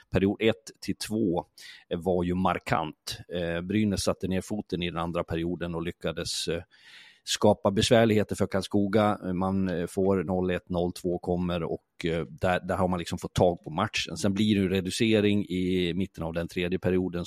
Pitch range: 90-105 Hz